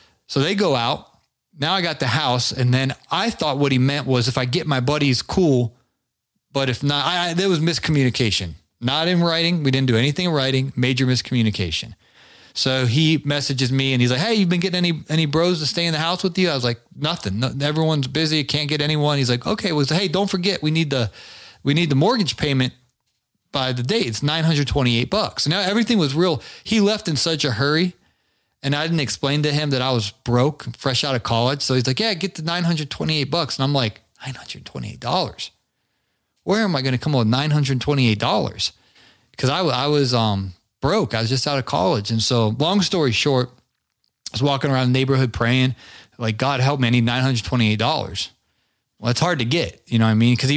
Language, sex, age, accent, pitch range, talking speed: English, male, 30-49, American, 125-155 Hz, 215 wpm